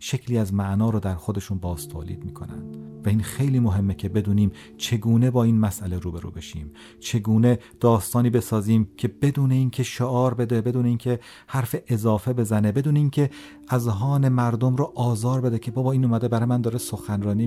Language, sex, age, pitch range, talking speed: Persian, male, 40-59, 95-120 Hz, 165 wpm